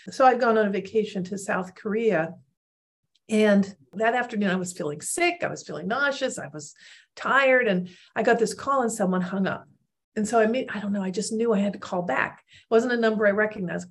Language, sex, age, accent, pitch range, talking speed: English, female, 50-69, American, 185-225 Hz, 230 wpm